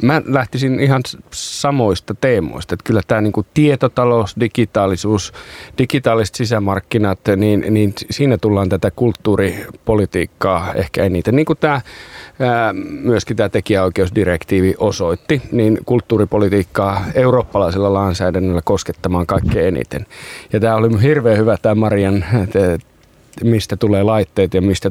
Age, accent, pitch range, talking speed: 30-49, native, 95-115 Hz, 115 wpm